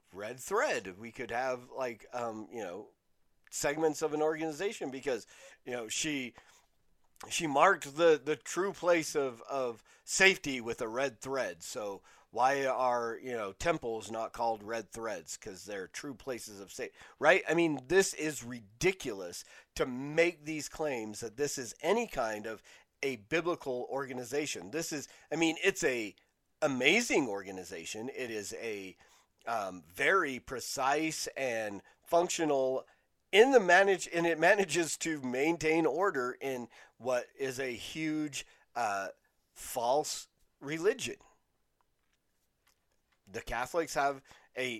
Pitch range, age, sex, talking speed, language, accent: 120-160 Hz, 40-59, male, 135 wpm, English, American